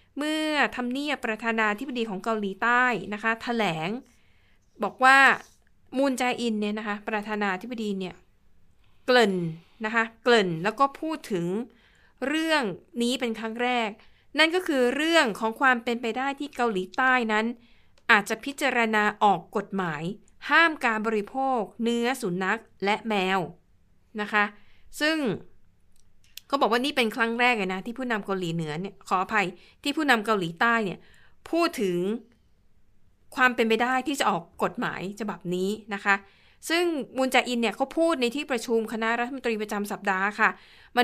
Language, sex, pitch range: Thai, female, 195-245 Hz